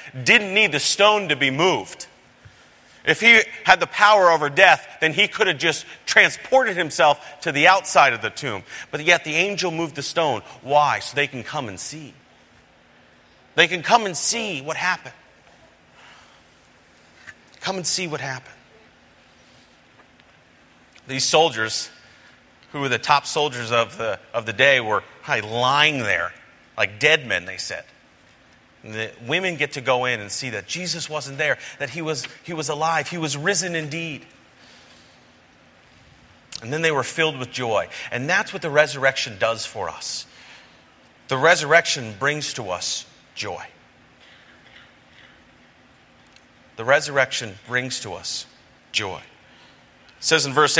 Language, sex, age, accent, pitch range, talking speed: English, male, 40-59, American, 130-165 Hz, 150 wpm